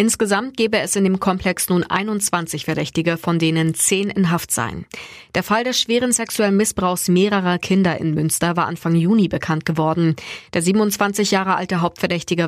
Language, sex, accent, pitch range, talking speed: German, female, German, 170-215 Hz, 170 wpm